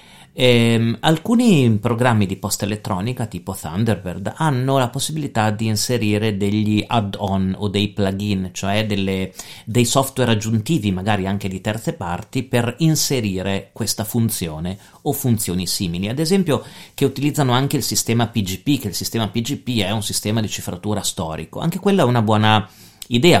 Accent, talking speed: native, 150 wpm